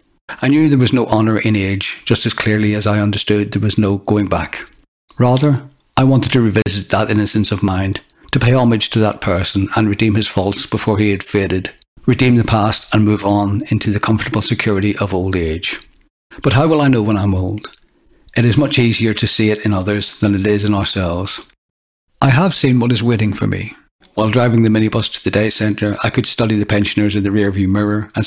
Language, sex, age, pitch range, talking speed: English, male, 60-79, 100-115 Hz, 220 wpm